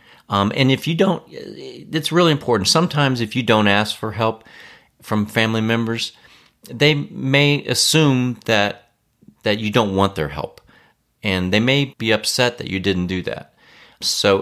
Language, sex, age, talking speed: English, male, 40-59, 160 wpm